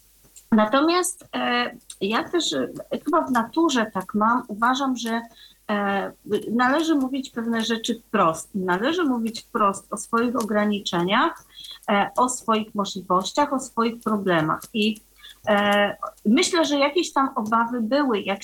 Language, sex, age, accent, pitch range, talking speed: Polish, female, 30-49, native, 200-275 Hz, 115 wpm